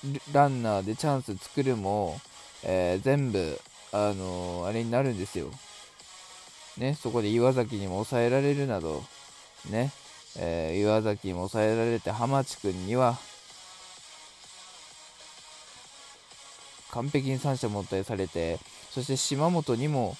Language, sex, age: Japanese, male, 20-39